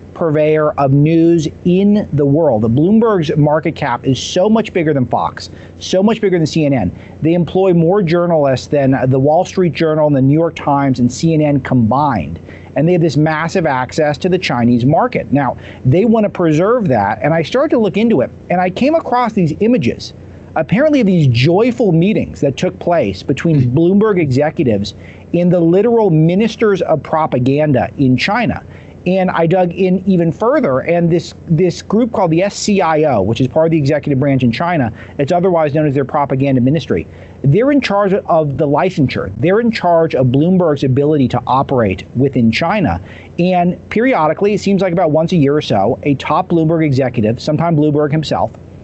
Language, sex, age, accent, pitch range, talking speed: English, male, 40-59, American, 135-180 Hz, 185 wpm